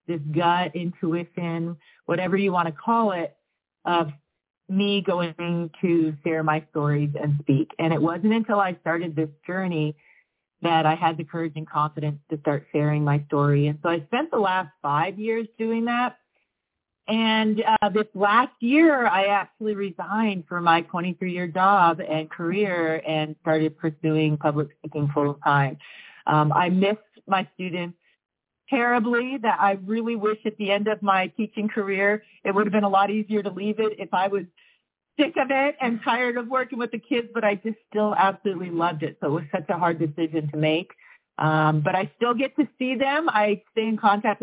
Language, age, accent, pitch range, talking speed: English, 40-59, American, 165-215 Hz, 180 wpm